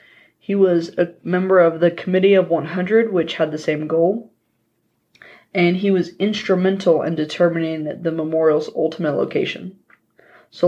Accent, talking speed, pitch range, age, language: American, 140 wpm, 160-195 Hz, 20-39, English